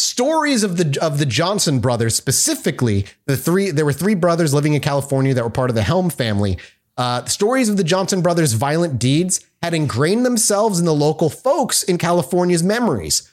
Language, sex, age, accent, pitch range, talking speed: English, male, 30-49, American, 135-205 Hz, 190 wpm